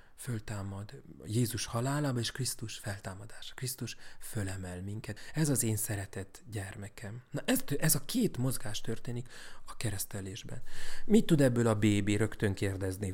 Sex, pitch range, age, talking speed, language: male, 105-130 Hz, 30-49, 135 wpm, Hungarian